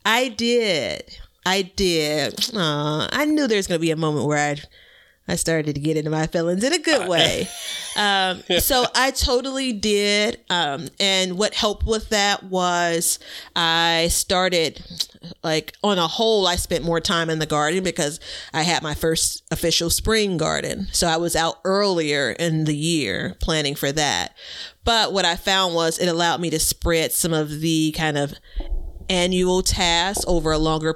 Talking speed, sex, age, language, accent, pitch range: 175 wpm, female, 30-49, English, American, 160-190 Hz